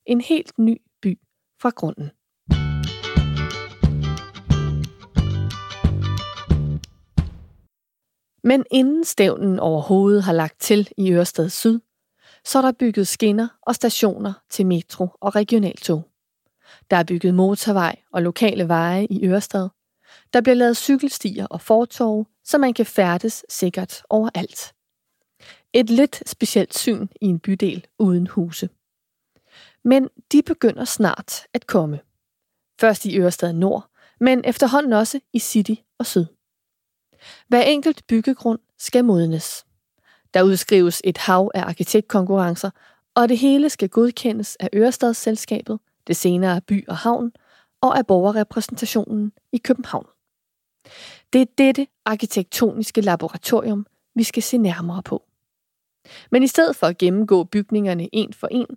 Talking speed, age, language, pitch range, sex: 125 wpm, 30-49, Danish, 180-240 Hz, female